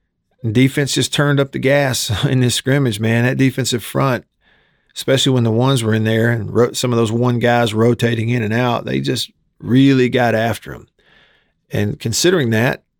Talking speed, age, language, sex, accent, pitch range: 180 wpm, 40-59, English, male, American, 115-135 Hz